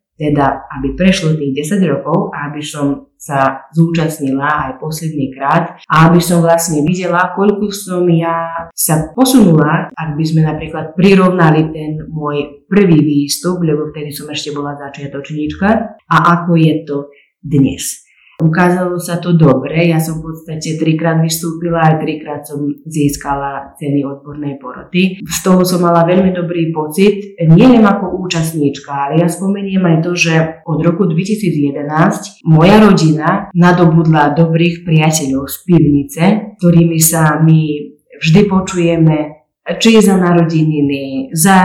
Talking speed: 140 wpm